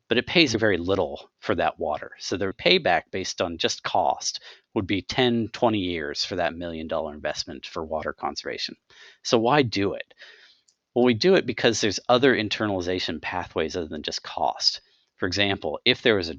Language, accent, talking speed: English, American, 185 wpm